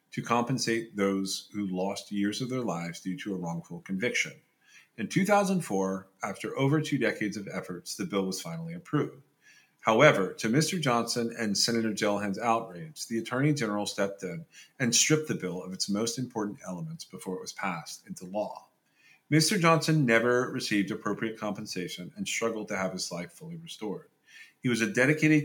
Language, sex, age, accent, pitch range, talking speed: English, male, 40-59, American, 100-135 Hz, 170 wpm